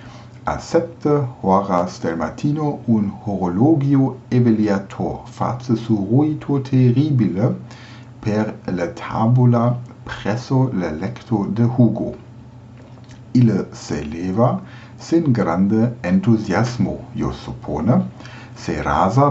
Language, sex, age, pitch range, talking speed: German, male, 60-79, 110-125 Hz, 90 wpm